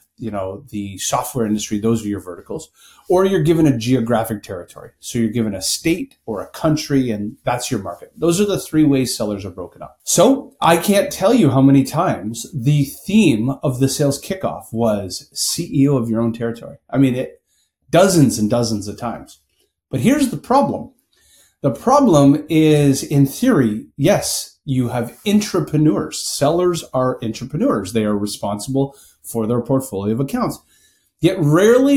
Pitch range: 115-155 Hz